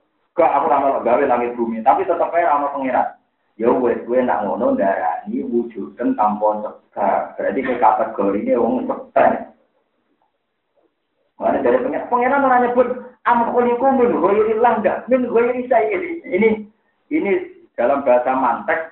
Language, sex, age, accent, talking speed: Indonesian, male, 40-59, native, 100 wpm